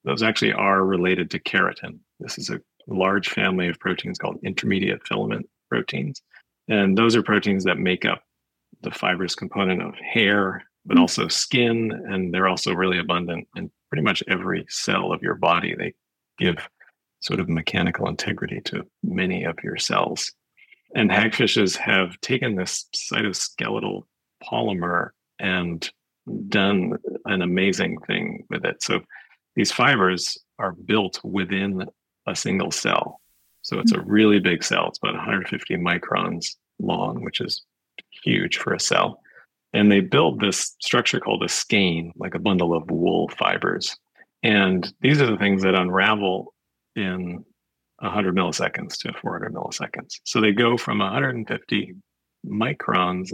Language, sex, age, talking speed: English, male, 40-59, 145 wpm